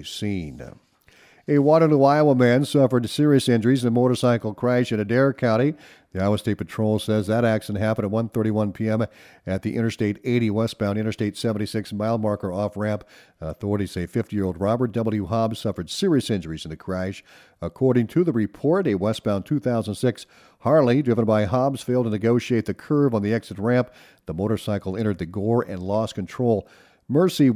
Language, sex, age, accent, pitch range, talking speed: English, male, 50-69, American, 105-130 Hz, 165 wpm